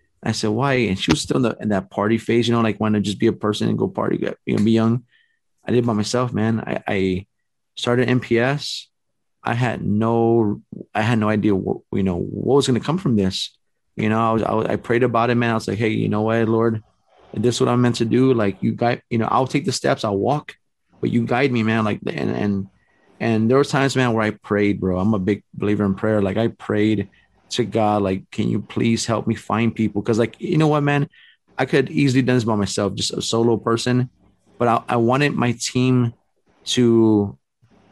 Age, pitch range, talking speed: 30-49, 105-120 Hz, 240 wpm